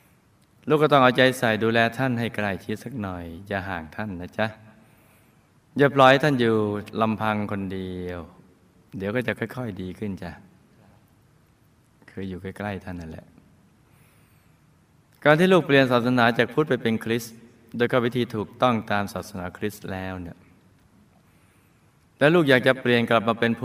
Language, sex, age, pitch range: Thai, male, 20-39, 100-125 Hz